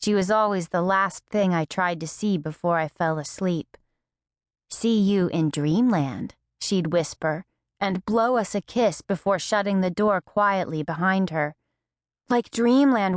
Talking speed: 155 wpm